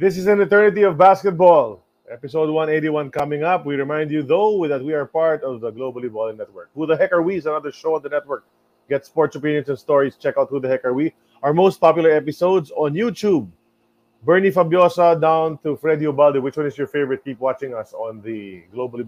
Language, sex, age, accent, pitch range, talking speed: English, male, 20-39, Filipino, 130-185 Hz, 215 wpm